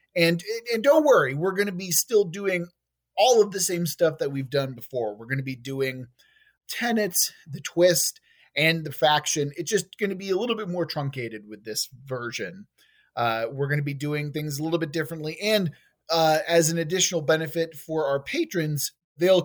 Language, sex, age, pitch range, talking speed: English, male, 30-49, 140-190 Hz, 195 wpm